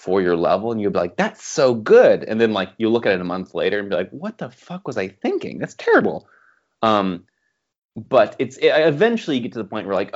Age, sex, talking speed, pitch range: 30-49, male, 255 wpm, 95-130 Hz